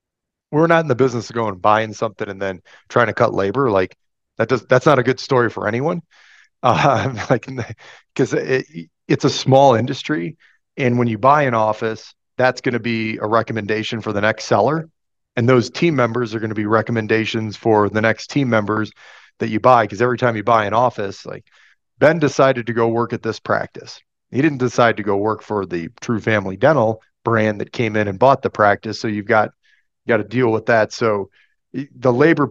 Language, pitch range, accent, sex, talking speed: English, 110-125 Hz, American, male, 210 wpm